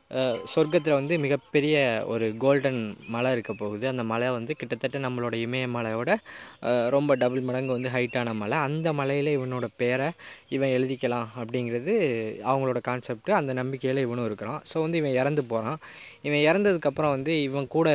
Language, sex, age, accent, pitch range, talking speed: Tamil, female, 20-39, native, 120-140 Hz, 145 wpm